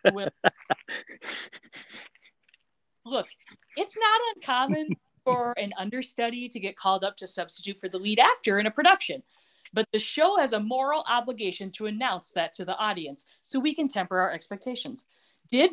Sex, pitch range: female, 200-275 Hz